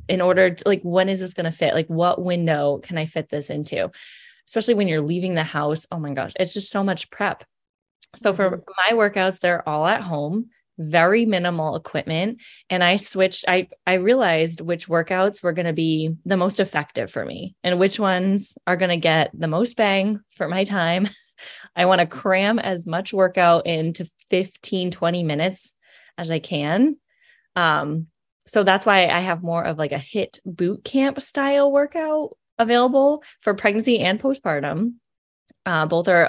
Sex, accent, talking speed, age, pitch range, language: female, American, 180 wpm, 20-39, 165-205 Hz, English